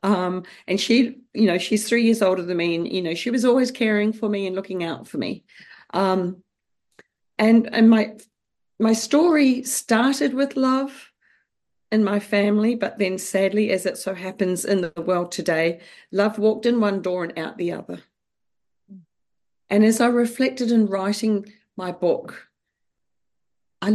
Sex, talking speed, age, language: female, 165 wpm, 40-59, English